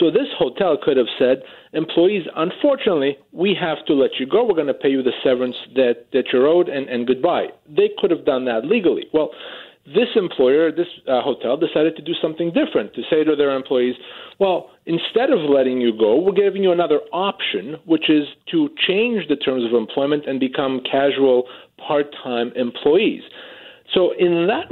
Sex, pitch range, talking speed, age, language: male, 140-190 Hz, 185 wpm, 40-59, English